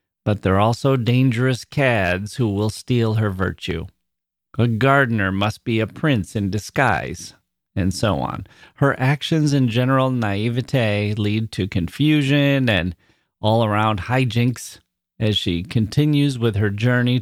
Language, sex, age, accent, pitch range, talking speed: English, male, 30-49, American, 105-135 Hz, 135 wpm